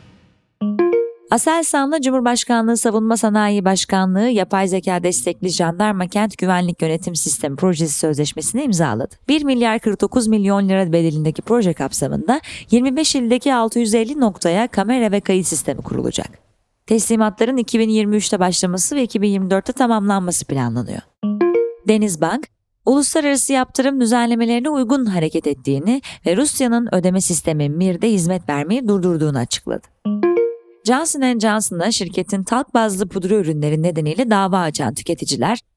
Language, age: Turkish, 30-49